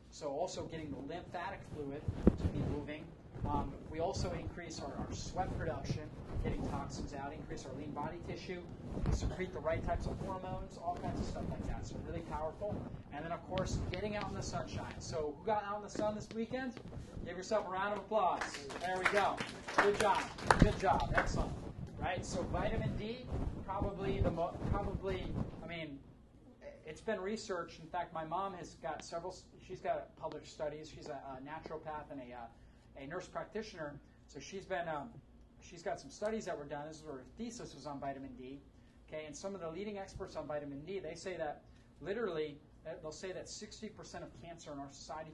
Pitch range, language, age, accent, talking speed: 145-195 Hz, English, 30-49, American, 195 wpm